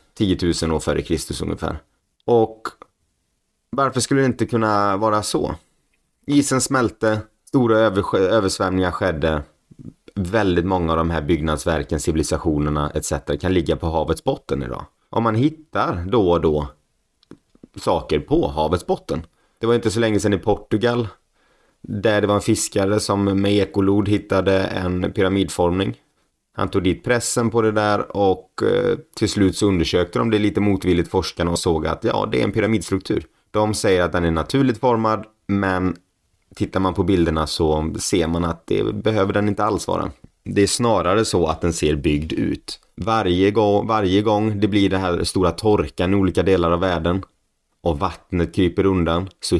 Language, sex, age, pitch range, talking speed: Swedish, male, 30-49, 85-105 Hz, 165 wpm